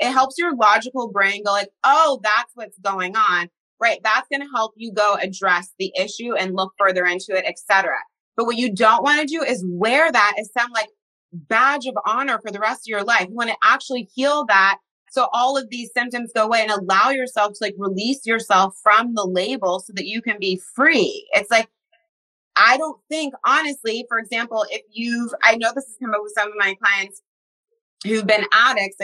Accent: American